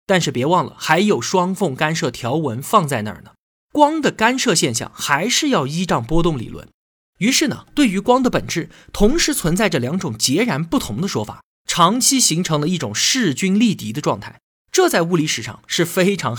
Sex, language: male, Chinese